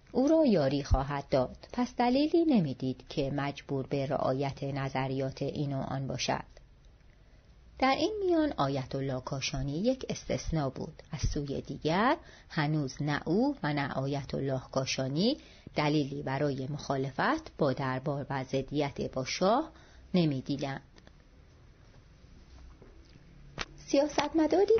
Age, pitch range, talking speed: 30-49, 135-175 Hz, 115 wpm